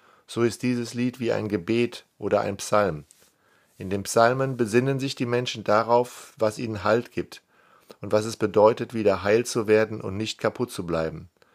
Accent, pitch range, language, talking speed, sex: German, 100-120 Hz, German, 180 wpm, male